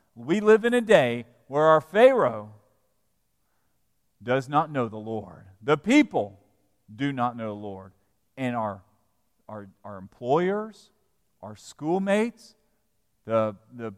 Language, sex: English, male